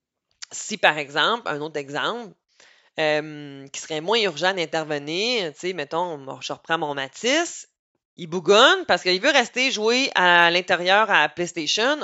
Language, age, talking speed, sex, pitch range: French, 30-49, 150 wpm, female, 150-200 Hz